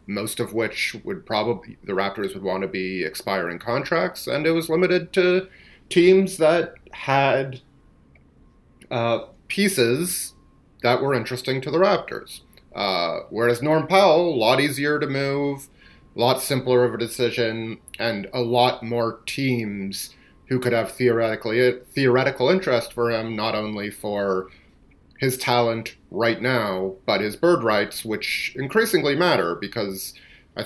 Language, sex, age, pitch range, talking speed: English, male, 30-49, 105-140 Hz, 145 wpm